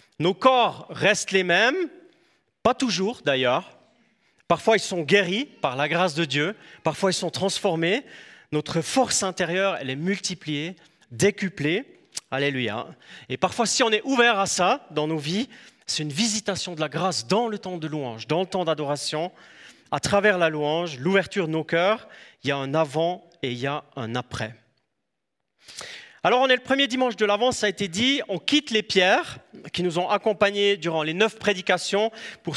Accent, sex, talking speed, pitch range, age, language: French, male, 180 wpm, 150-210 Hz, 30-49, French